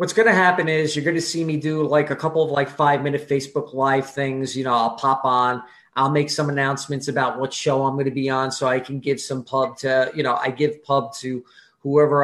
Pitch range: 135-155 Hz